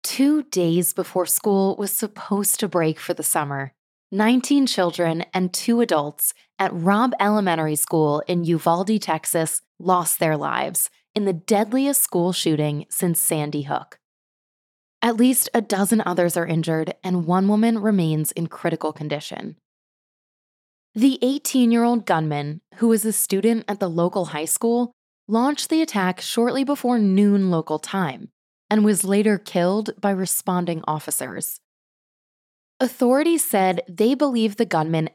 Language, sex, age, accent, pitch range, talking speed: English, female, 20-39, American, 170-225 Hz, 140 wpm